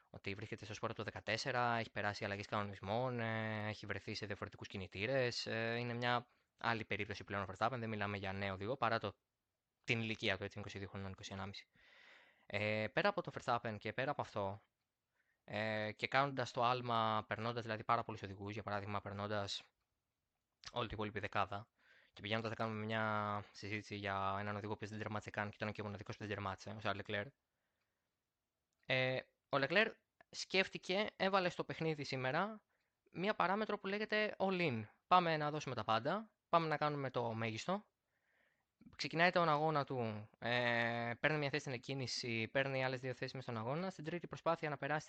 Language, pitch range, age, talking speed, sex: Greek, 105-135 Hz, 20-39, 165 wpm, male